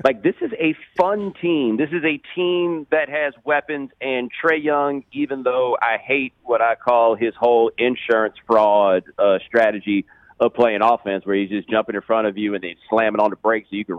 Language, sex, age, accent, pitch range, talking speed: English, male, 40-59, American, 105-150 Hz, 210 wpm